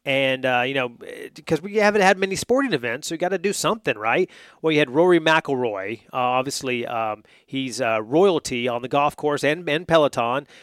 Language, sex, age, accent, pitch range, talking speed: English, male, 30-49, American, 130-165 Hz, 205 wpm